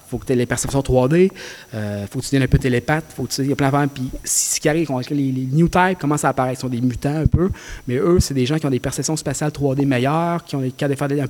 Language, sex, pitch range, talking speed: French, male, 125-150 Hz, 315 wpm